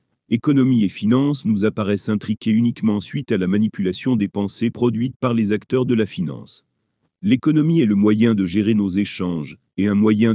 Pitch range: 100-125 Hz